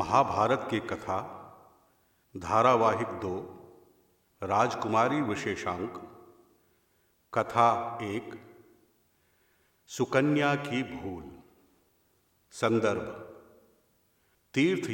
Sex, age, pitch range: male, 50-69, 95-145 Hz